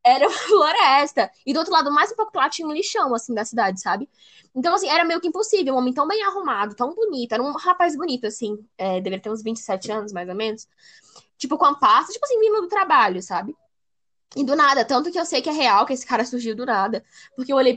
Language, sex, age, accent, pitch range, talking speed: Portuguese, female, 10-29, Brazilian, 225-330 Hz, 250 wpm